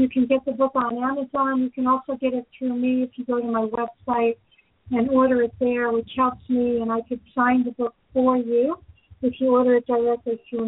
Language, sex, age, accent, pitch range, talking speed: English, female, 50-69, American, 230-260 Hz, 230 wpm